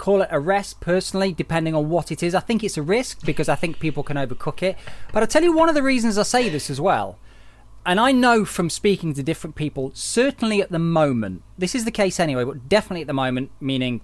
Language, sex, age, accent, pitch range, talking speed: English, male, 20-39, British, 130-180 Hz, 250 wpm